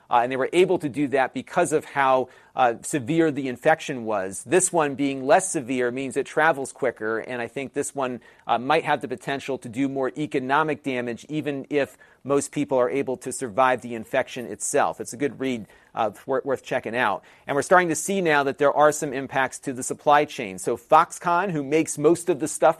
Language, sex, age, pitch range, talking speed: English, male, 40-59, 130-155 Hz, 215 wpm